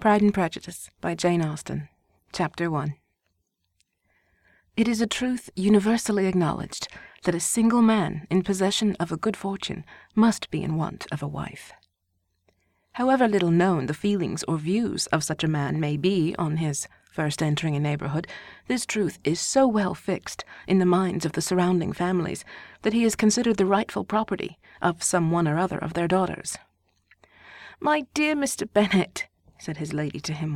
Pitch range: 155-235 Hz